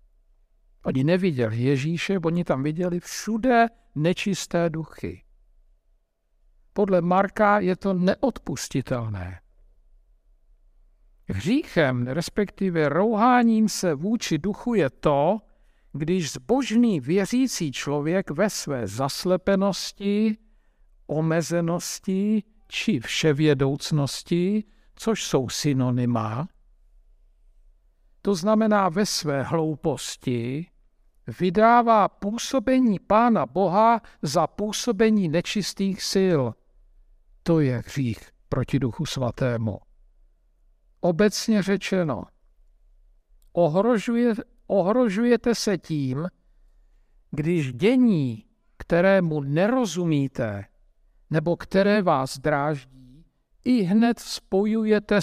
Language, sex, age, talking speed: Czech, male, 60-79, 75 wpm